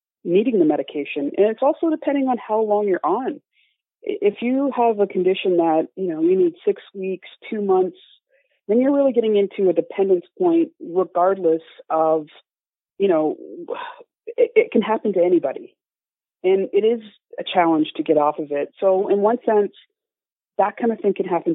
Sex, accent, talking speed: female, American, 180 wpm